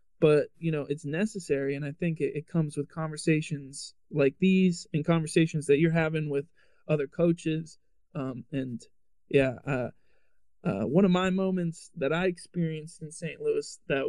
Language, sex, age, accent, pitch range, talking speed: English, male, 20-39, American, 140-165 Hz, 165 wpm